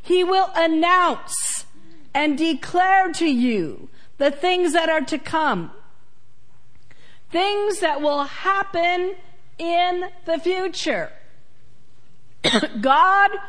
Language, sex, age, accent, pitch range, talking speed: English, female, 50-69, American, 240-340 Hz, 95 wpm